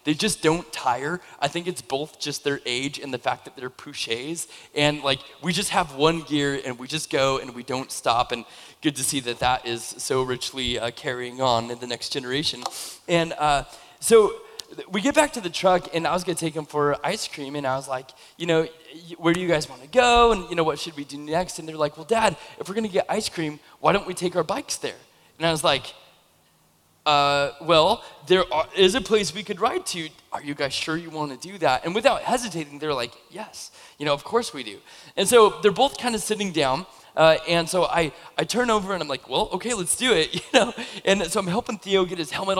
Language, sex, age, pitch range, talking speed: English, male, 20-39, 145-185 Hz, 245 wpm